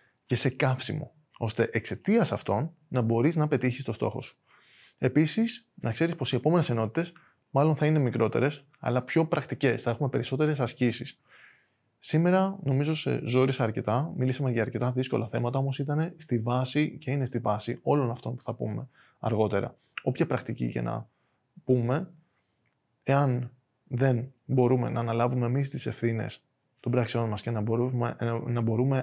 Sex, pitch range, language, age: male, 115-145 Hz, Greek, 20-39